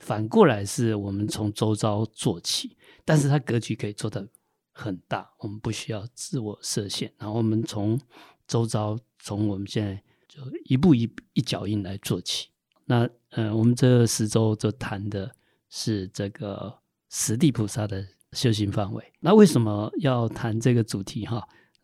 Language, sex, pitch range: Chinese, male, 105-130 Hz